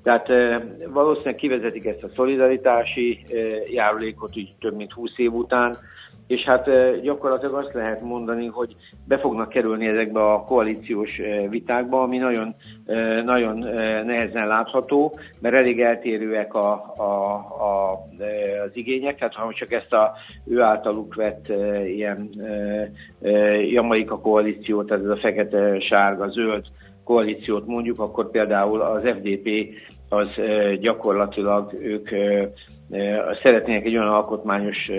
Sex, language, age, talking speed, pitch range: male, Hungarian, 60-79, 120 wpm, 105-120 Hz